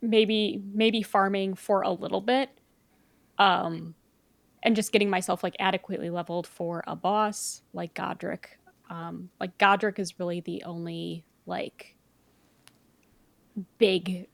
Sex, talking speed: female, 120 wpm